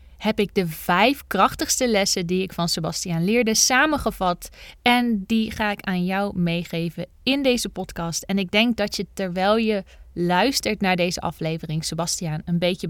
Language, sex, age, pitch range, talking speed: Dutch, female, 20-39, 170-225 Hz, 170 wpm